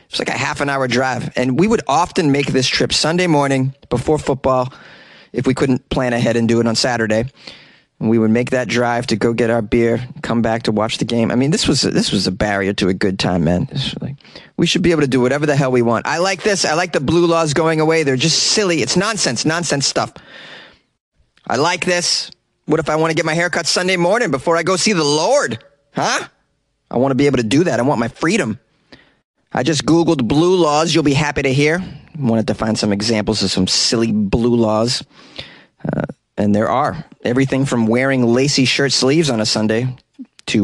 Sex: male